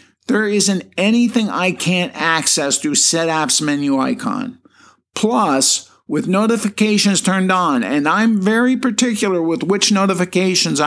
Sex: male